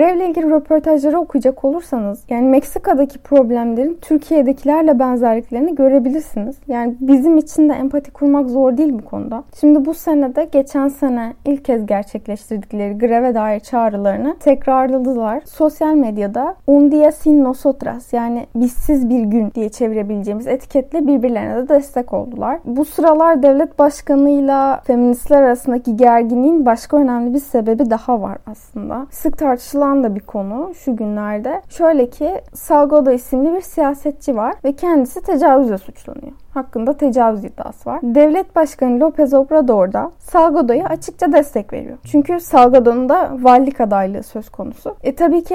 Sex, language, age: female, Turkish, 10-29